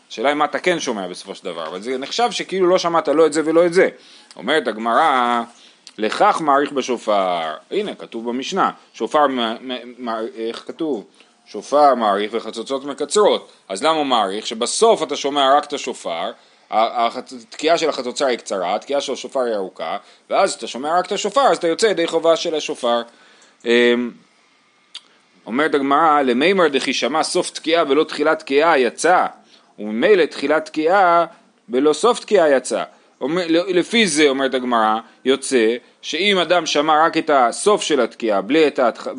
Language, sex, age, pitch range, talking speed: Hebrew, male, 30-49, 125-170 Hz, 155 wpm